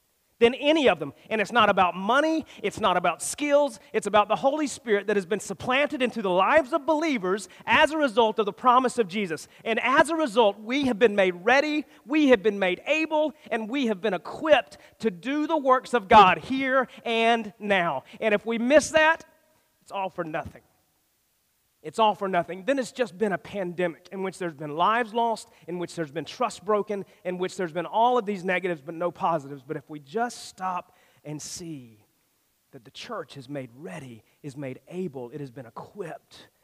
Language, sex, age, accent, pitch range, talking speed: English, male, 40-59, American, 150-235 Hz, 205 wpm